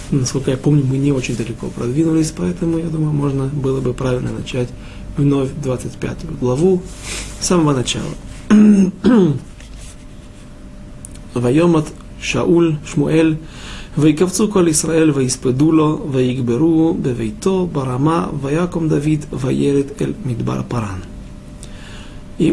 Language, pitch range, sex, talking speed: Russian, 125-165 Hz, male, 60 wpm